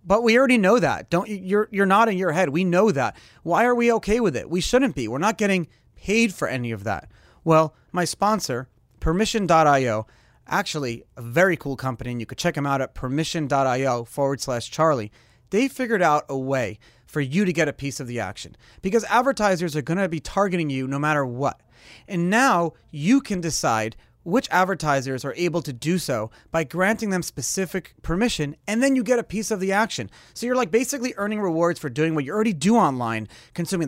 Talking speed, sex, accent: 200 wpm, male, American